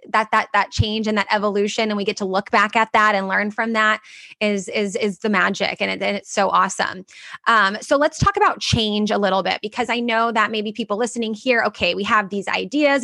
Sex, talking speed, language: female, 235 wpm, English